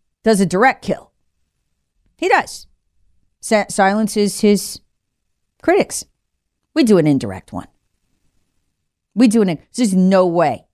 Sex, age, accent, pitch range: female, 40-59, American, 155-235 Hz